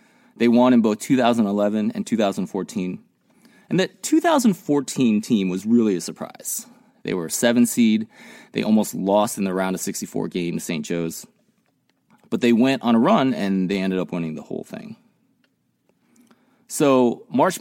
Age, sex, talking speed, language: 30-49, male, 165 wpm, English